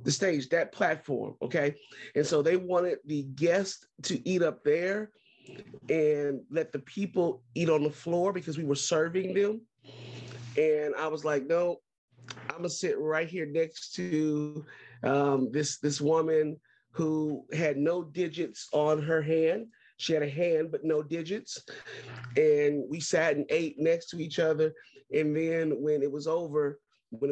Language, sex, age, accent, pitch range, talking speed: English, male, 30-49, American, 145-170 Hz, 165 wpm